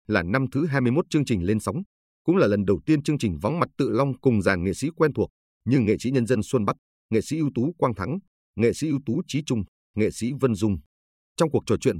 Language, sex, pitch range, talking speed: Vietnamese, male, 100-140 Hz, 260 wpm